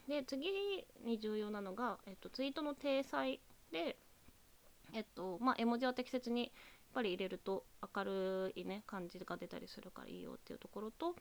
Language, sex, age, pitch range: Japanese, female, 20-39, 205-280 Hz